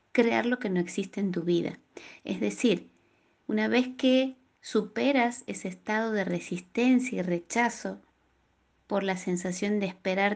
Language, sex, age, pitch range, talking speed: Spanish, female, 20-39, 180-235 Hz, 145 wpm